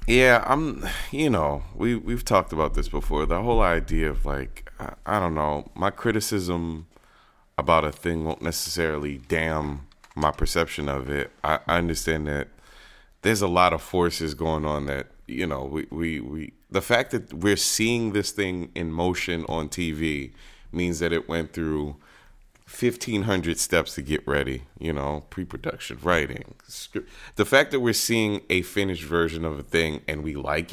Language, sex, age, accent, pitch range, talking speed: English, male, 30-49, American, 80-105 Hz, 170 wpm